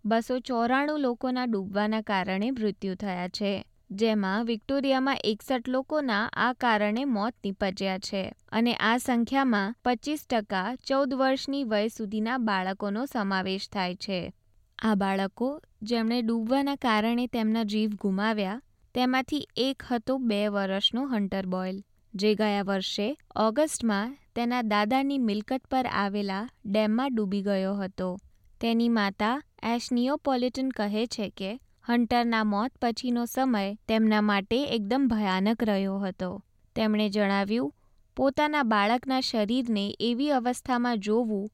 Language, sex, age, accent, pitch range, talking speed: Gujarati, female, 20-39, native, 200-250 Hz, 115 wpm